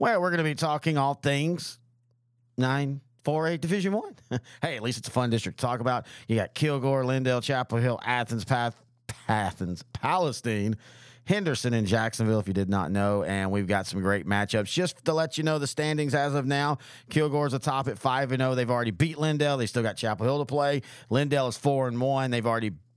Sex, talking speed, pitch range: male, 215 wpm, 115-135 Hz